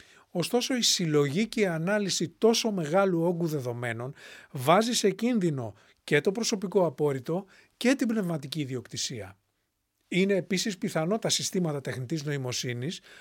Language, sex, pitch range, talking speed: English, male, 140-215 Hz, 125 wpm